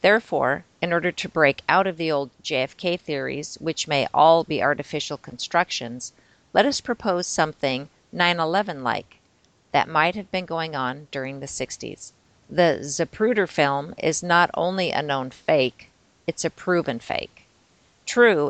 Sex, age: female, 40-59